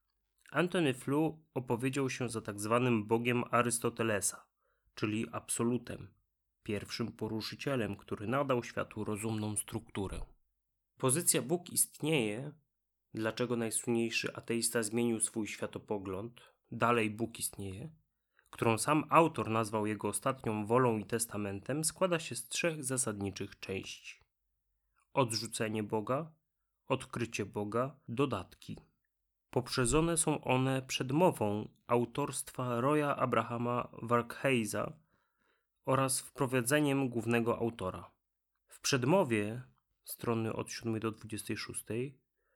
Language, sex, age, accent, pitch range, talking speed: Polish, male, 30-49, native, 110-140 Hz, 95 wpm